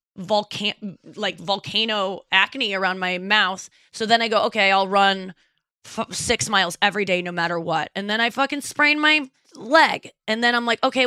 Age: 20-39